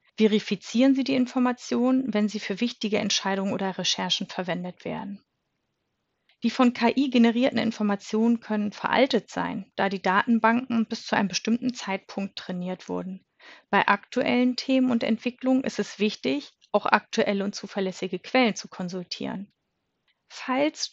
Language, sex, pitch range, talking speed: German, female, 200-245 Hz, 135 wpm